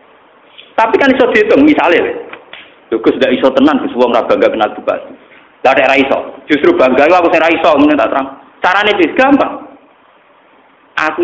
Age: 40-59